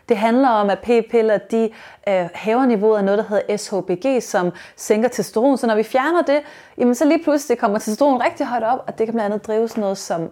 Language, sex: Danish, female